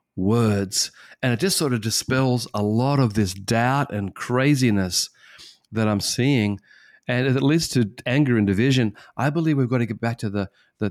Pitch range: 105-125 Hz